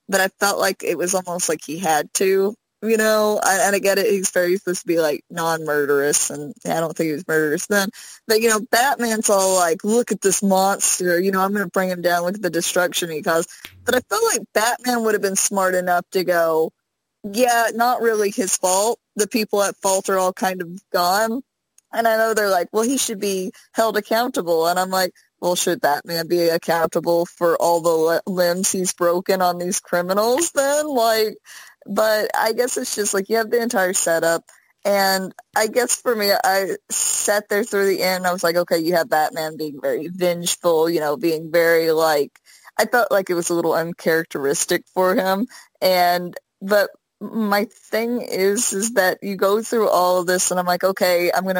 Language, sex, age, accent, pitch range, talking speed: English, female, 20-39, American, 175-220 Hz, 210 wpm